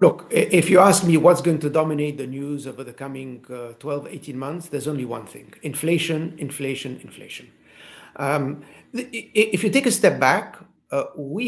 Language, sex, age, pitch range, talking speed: English, male, 50-69, 140-180 Hz, 185 wpm